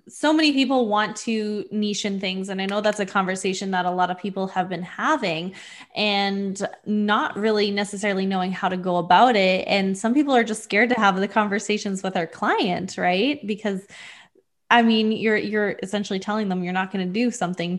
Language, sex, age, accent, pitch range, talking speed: English, female, 20-39, American, 185-220 Hz, 200 wpm